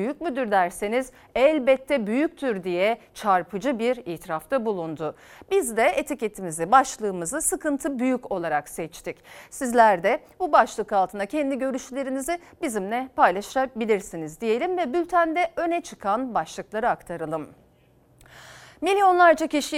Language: Turkish